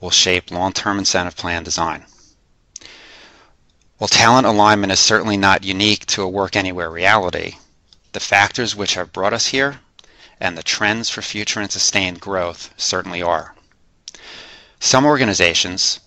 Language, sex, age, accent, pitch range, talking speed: English, male, 30-49, American, 90-105 Hz, 140 wpm